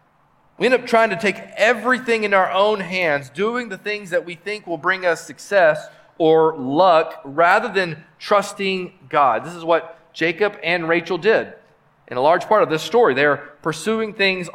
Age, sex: 40-59, male